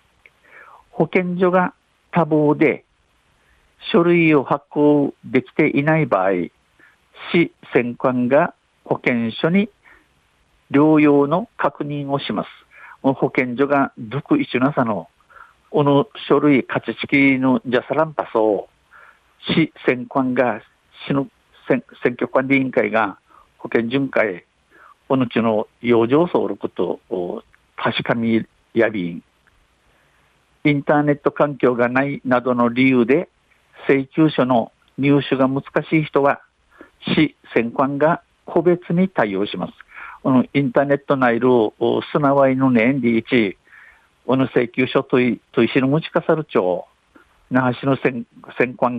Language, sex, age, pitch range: Japanese, male, 60-79, 125-150 Hz